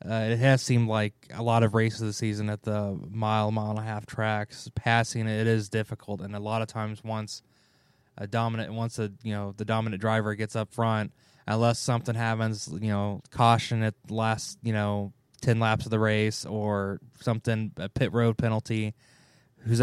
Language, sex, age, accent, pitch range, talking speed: English, male, 20-39, American, 105-125 Hz, 195 wpm